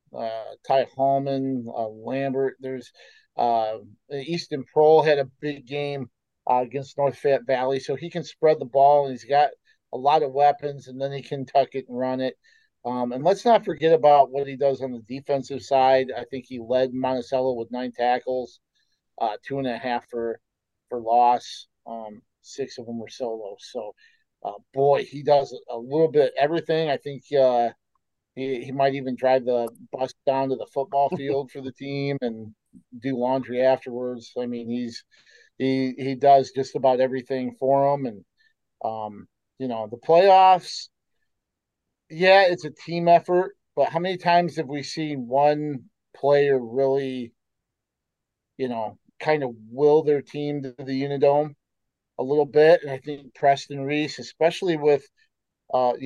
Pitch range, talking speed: 125-145 Hz, 170 wpm